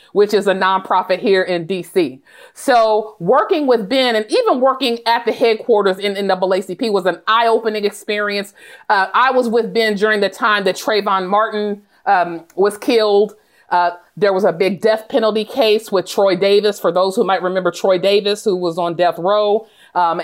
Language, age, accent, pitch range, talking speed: English, 40-59, American, 200-250 Hz, 185 wpm